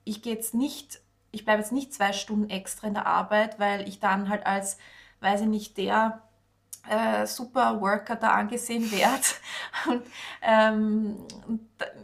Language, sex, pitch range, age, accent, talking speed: German, female, 200-225 Hz, 20-39, Austrian, 140 wpm